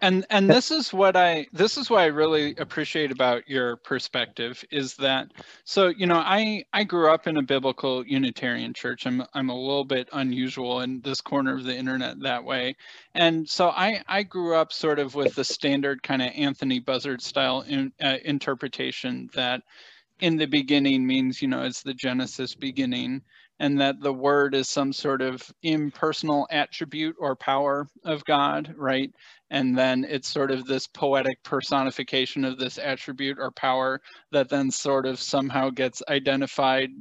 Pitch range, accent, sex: 135-155 Hz, American, male